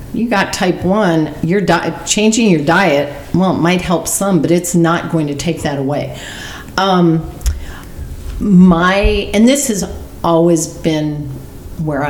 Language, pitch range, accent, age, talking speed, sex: English, 155-195 Hz, American, 40-59, 145 wpm, female